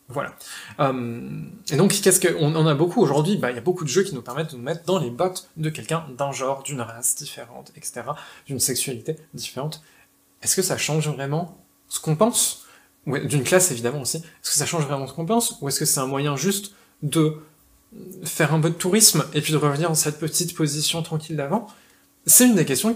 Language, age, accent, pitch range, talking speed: French, 20-39, French, 140-195 Hz, 225 wpm